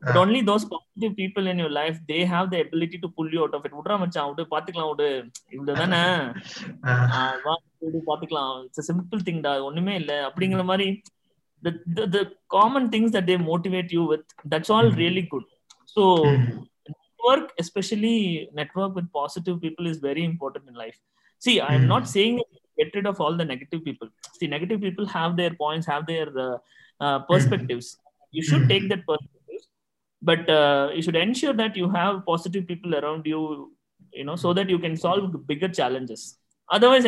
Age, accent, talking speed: 20-39, native, 185 wpm